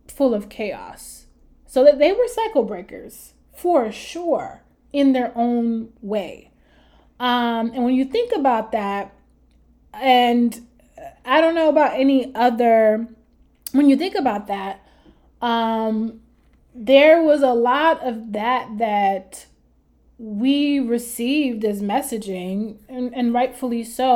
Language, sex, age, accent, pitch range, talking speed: English, female, 20-39, American, 210-255 Hz, 125 wpm